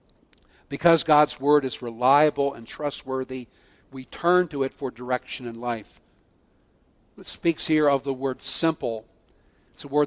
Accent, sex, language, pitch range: American, male, English, 120-150 Hz